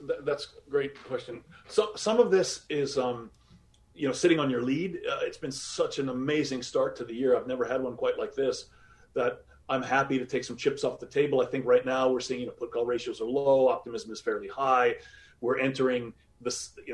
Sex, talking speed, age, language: male, 225 wpm, 40-59, English